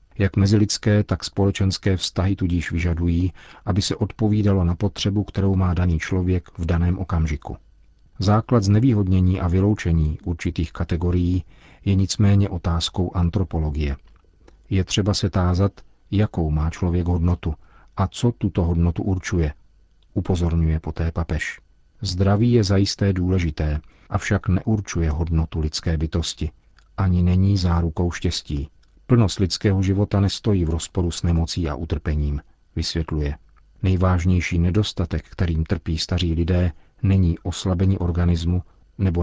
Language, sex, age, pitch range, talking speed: Czech, male, 40-59, 85-100 Hz, 120 wpm